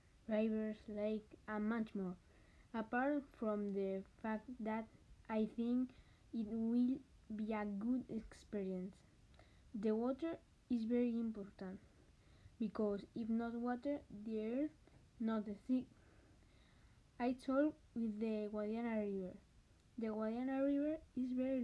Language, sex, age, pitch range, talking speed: Spanish, female, 20-39, 220-260 Hz, 120 wpm